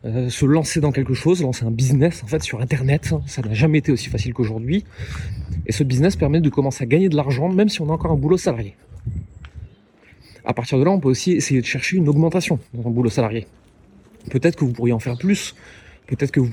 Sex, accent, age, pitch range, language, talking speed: male, French, 30-49, 120-160 Hz, French, 230 wpm